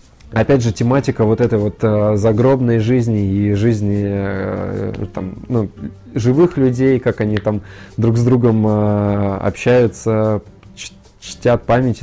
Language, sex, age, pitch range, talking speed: Russian, male, 20-39, 105-135 Hz, 115 wpm